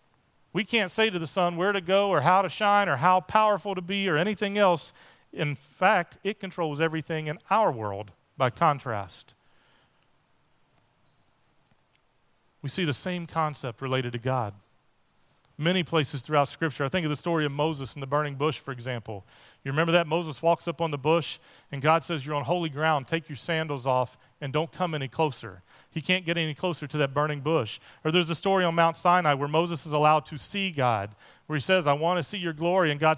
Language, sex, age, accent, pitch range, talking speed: English, male, 40-59, American, 145-180 Hz, 210 wpm